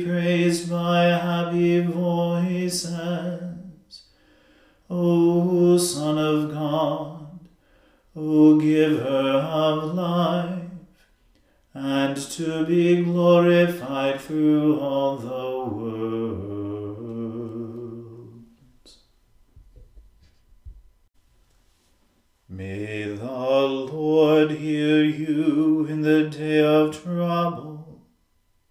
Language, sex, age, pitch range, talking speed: English, male, 40-59, 145-165 Hz, 65 wpm